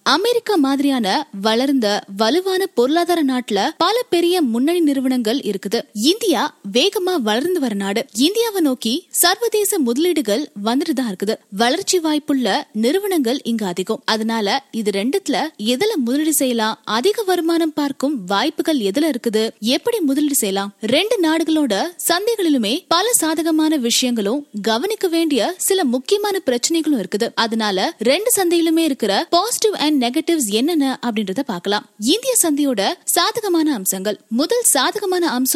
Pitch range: 230-340 Hz